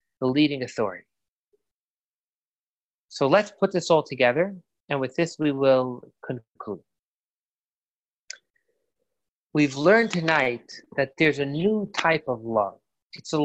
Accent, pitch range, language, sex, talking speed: American, 135-185 Hz, English, male, 120 wpm